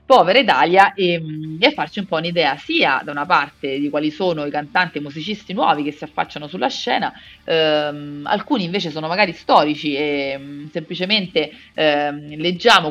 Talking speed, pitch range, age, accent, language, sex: 165 wpm, 150-200 Hz, 30-49, native, Italian, female